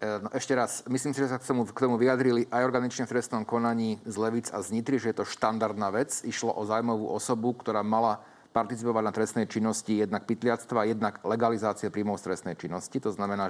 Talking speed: 200 wpm